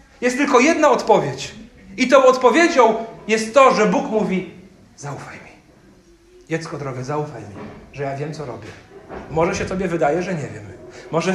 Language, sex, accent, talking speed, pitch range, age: Polish, male, native, 165 wpm, 150-215 Hz, 40-59